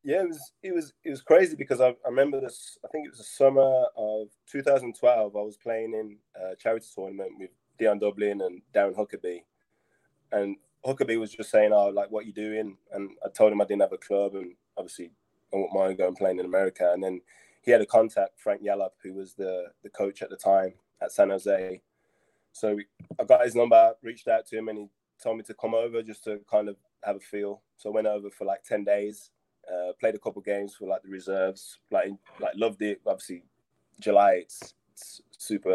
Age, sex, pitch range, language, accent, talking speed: 20-39, male, 100-115 Hz, English, British, 225 wpm